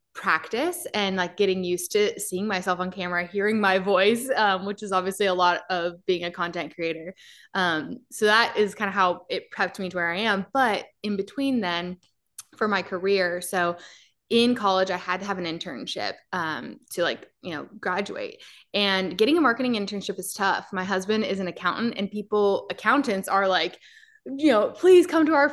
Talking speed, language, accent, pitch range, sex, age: 195 wpm, English, American, 180-220 Hz, female, 20-39